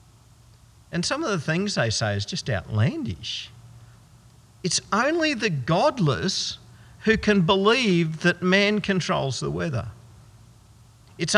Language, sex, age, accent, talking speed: English, male, 50-69, Australian, 120 wpm